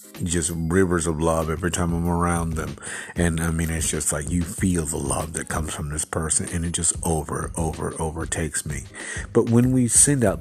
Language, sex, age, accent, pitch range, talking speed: English, male, 50-69, American, 80-95 Hz, 215 wpm